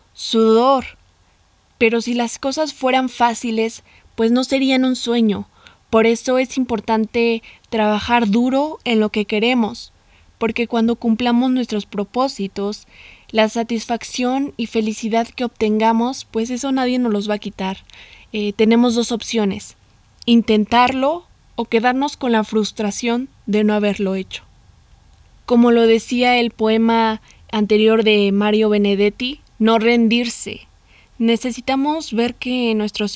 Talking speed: 125 wpm